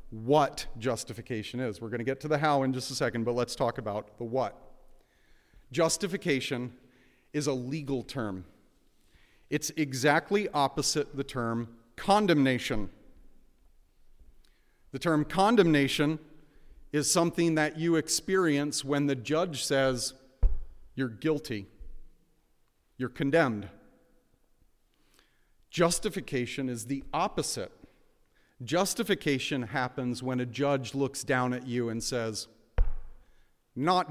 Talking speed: 110 wpm